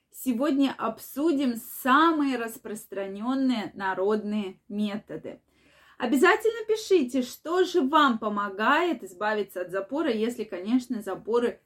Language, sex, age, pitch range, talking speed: Russian, female, 20-39, 215-300 Hz, 95 wpm